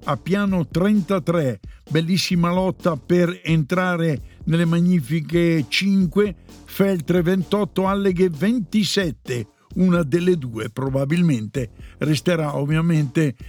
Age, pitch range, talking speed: 60-79, 145-185 Hz, 90 wpm